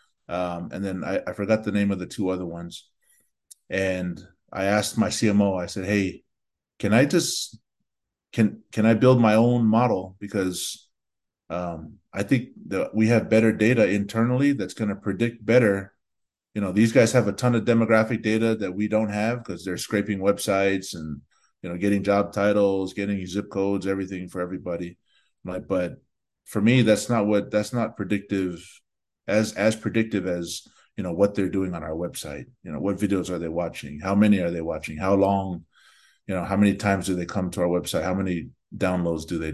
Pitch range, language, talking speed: 95-110 Hz, English, 195 wpm